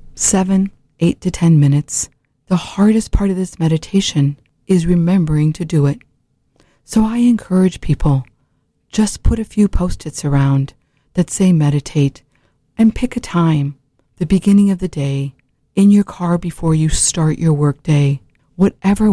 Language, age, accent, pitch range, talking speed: English, 50-69, American, 140-195 Hz, 150 wpm